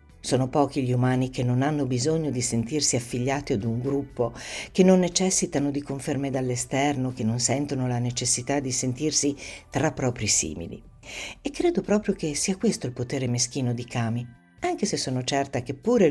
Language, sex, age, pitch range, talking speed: Italian, female, 60-79, 125-185 Hz, 175 wpm